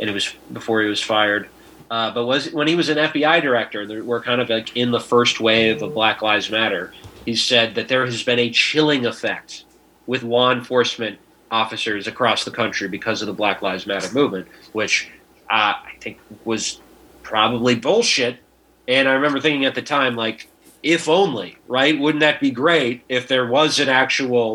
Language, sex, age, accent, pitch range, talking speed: English, male, 30-49, American, 115-145 Hz, 195 wpm